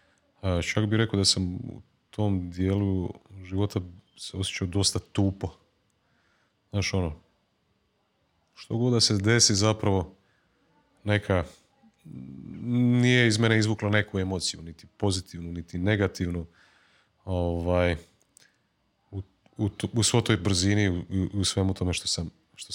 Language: Croatian